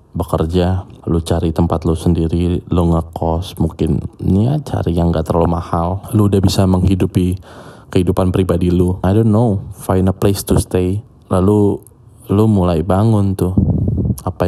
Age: 20-39